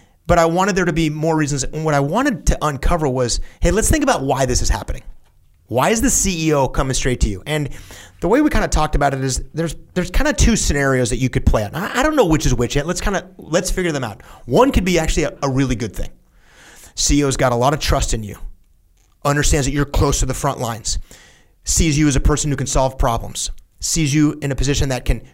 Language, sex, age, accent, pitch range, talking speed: English, male, 30-49, American, 120-155 Hz, 255 wpm